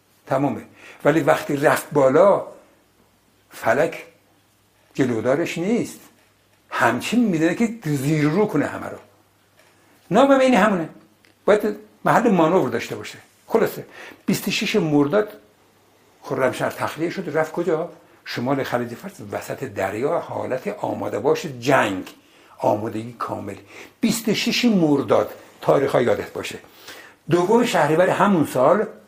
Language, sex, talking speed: Persian, male, 105 wpm